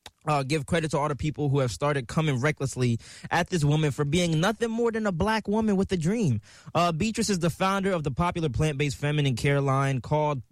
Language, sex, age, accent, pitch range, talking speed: English, male, 20-39, American, 130-170 Hz, 220 wpm